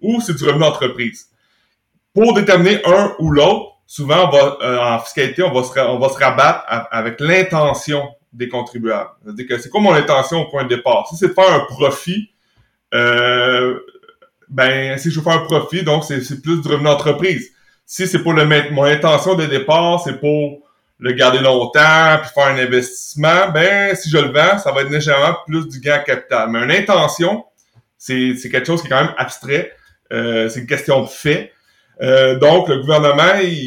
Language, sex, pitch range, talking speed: French, male, 130-170 Hz, 205 wpm